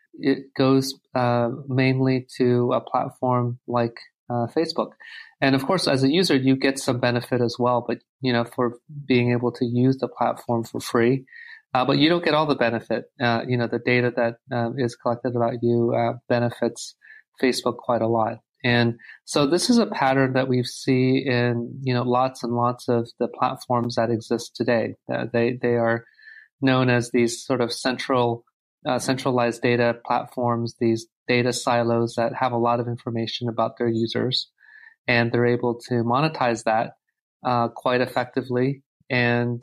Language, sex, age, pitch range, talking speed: English, male, 30-49, 120-130 Hz, 175 wpm